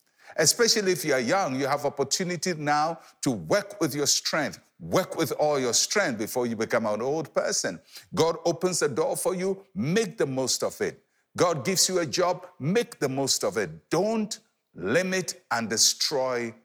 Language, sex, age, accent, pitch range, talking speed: English, male, 60-79, Nigerian, 140-195 Hz, 180 wpm